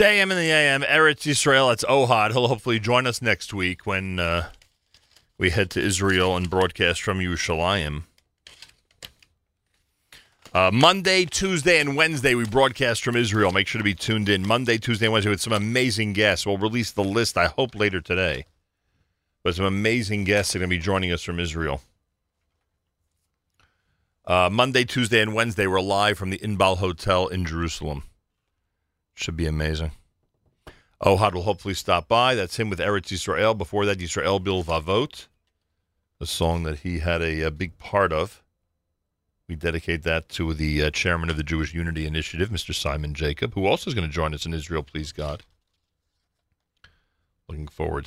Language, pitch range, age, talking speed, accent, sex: English, 85-105 Hz, 40-59, 170 wpm, American, male